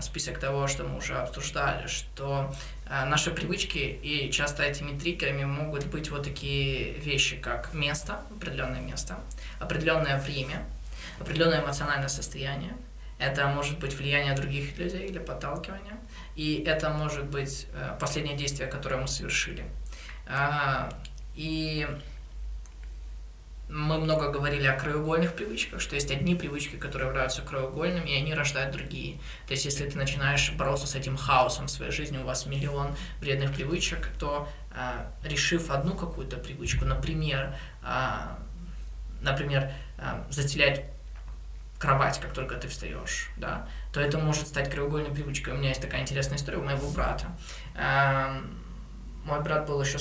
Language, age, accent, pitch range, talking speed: Russian, 20-39, native, 135-150 Hz, 135 wpm